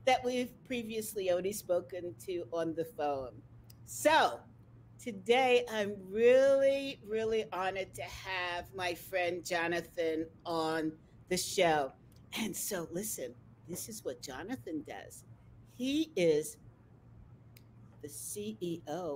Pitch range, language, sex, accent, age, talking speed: 140-230 Hz, English, female, American, 50-69, 110 wpm